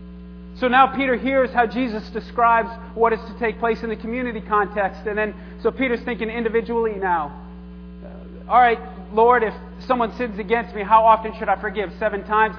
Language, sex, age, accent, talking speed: English, male, 30-49, American, 175 wpm